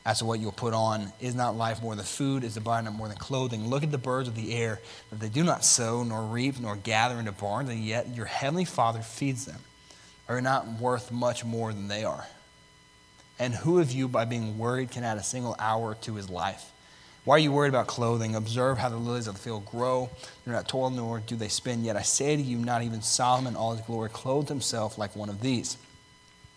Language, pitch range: English, 110-130 Hz